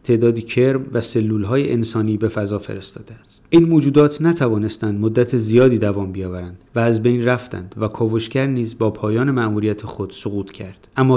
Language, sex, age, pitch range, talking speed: Persian, male, 30-49, 105-125 Hz, 160 wpm